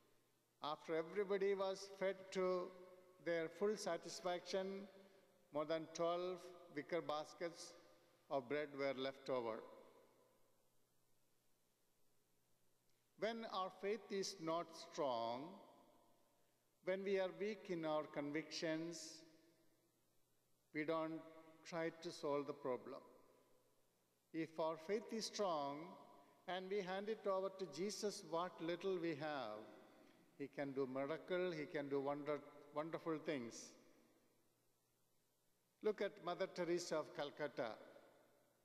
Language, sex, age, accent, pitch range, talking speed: English, male, 50-69, Indian, 150-190 Hz, 110 wpm